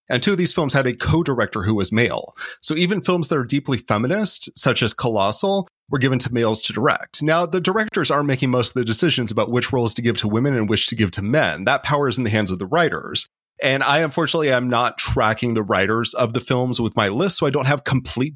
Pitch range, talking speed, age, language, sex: 110-145 Hz, 250 wpm, 30-49, English, male